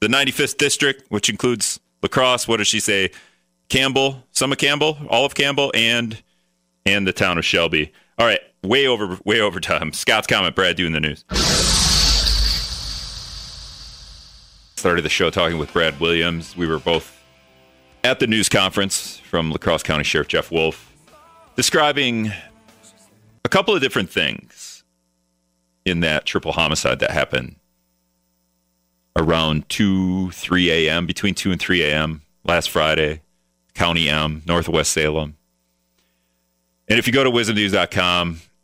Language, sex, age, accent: English, male, 40-59, American